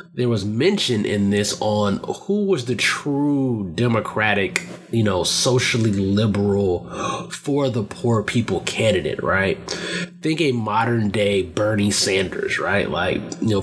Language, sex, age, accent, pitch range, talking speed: English, male, 20-39, American, 105-145 Hz, 135 wpm